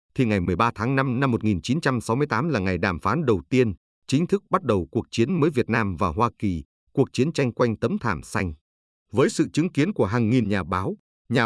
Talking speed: 220 wpm